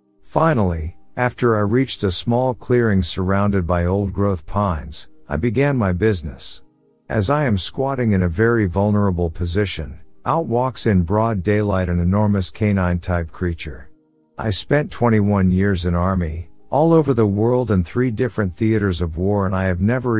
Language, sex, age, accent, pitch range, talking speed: English, male, 50-69, American, 90-115 Hz, 155 wpm